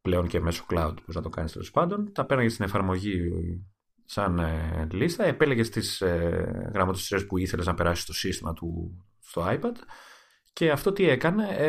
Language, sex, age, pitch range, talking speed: Greek, male, 30-49, 90-140 Hz, 165 wpm